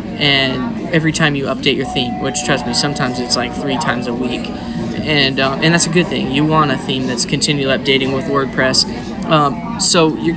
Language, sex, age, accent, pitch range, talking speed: English, male, 20-39, American, 130-160 Hz, 210 wpm